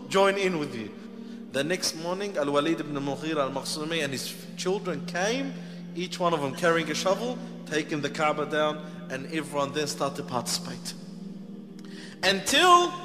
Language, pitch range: English, 180-245 Hz